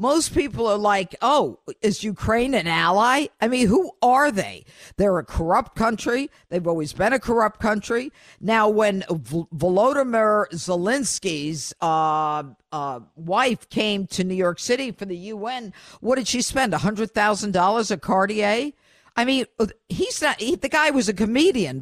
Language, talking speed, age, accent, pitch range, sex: English, 155 wpm, 50-69, American, 180-230 Hz, female